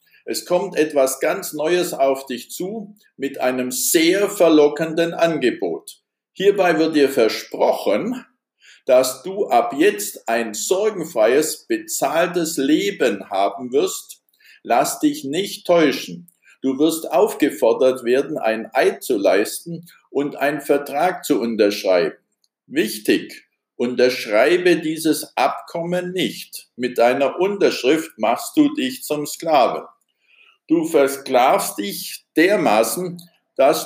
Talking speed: 110 wpm